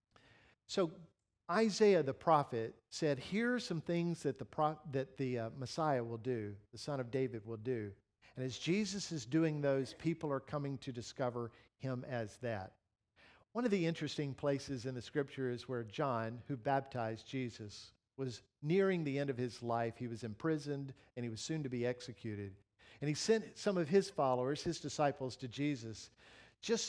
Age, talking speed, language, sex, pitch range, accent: 50-69, 180 wpm, English, male, 115-190 Hz, American